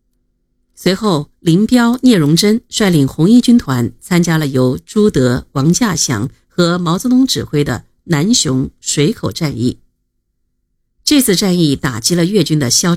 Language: Chinese